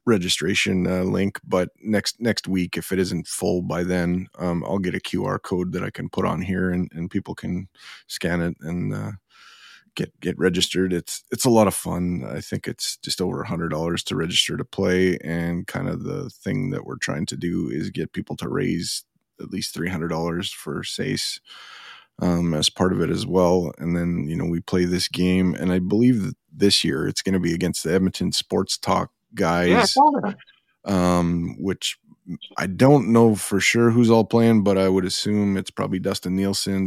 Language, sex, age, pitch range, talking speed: English, male, 30-49, 90-100 Hz, 200 wpm